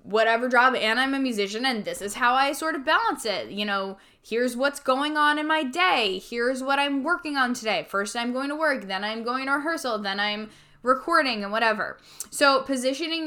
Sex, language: female, English